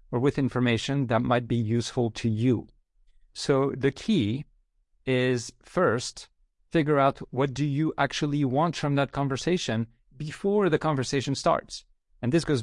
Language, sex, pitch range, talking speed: English, male, 105-130 Hz, 145 wpm